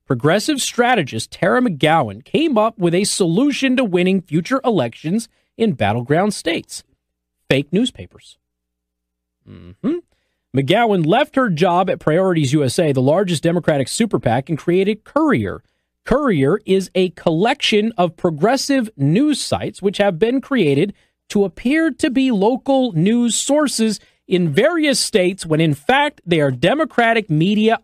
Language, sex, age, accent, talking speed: English, male, 40-59, American, 140 wpm